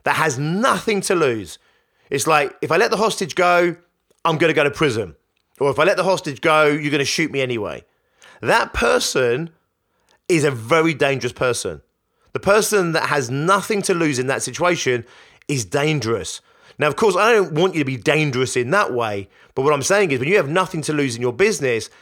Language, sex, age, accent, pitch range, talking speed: English, male, 30-49, British, 135-180 Hz, 215 wpm